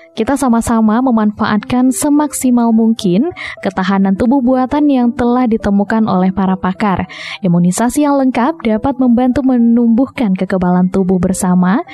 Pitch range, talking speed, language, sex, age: 185-255 Hz, 115 wpm, Indonesian, female, 20-39